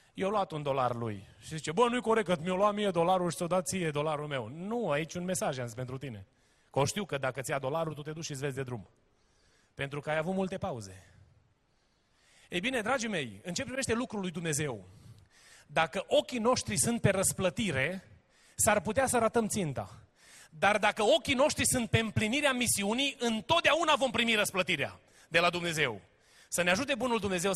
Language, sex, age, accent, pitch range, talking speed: Romanian, male, 30-49, native, 130-210 Hz, 200 wpm